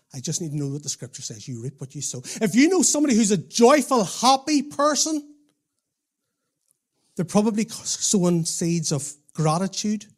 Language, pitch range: English, 150-235 Hz